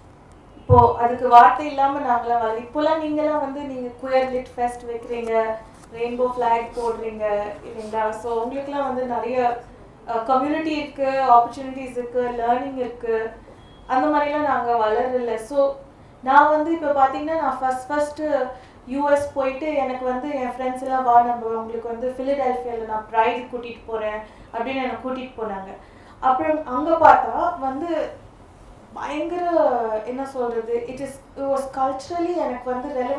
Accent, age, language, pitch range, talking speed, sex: native, 30-49, Tamil, 240-295 Hz, 120 wpm, female